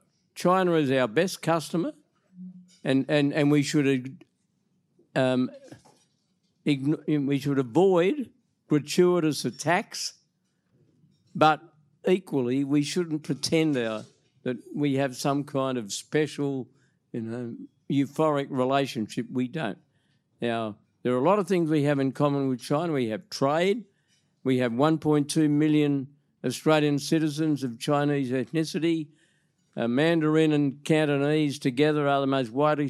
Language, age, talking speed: English, 50-69, 130 wpm